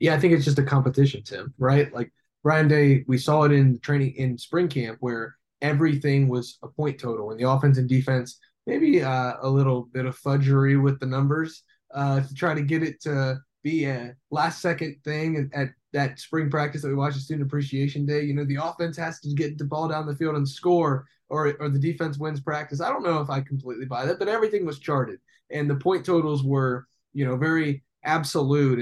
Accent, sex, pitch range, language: American, male, 135-160 Hz, English